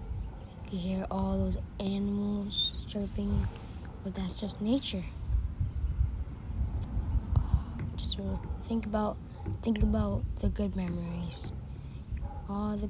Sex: female